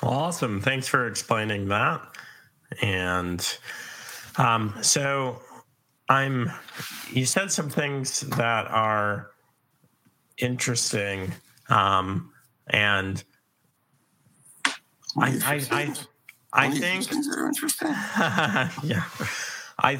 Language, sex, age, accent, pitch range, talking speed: English, male, 30-49, American, 100-125 Hz, 75 wpm